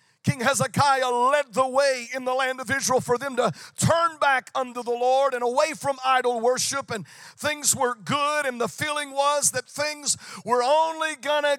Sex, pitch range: male, 175-255 Hz